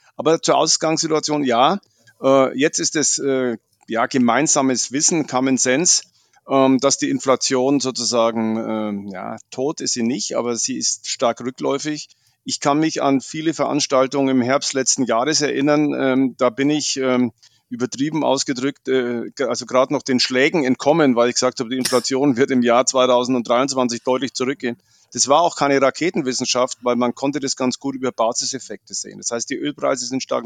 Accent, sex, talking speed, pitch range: German, male, 160 wpm, 125-145 Hz